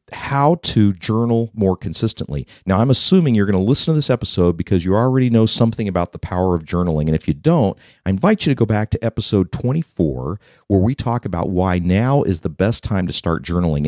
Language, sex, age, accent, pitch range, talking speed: English, male, 50-69, American, 90-125 Hz, 220 wpm